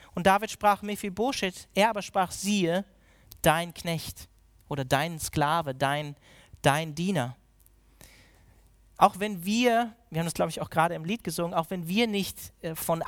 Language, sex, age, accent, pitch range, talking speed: German, male, 40-59, German, 160-205 Hz, 155 wpm